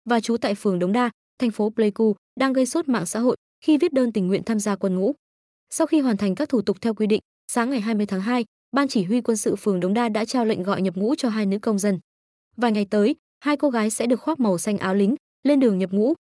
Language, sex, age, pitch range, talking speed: Vietnamese, female, 20-39, 195-250 Hz, 275 wpm